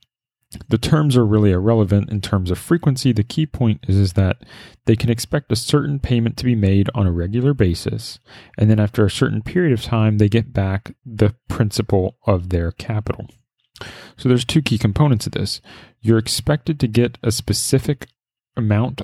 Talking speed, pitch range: 185 wpm, 105-130 Hz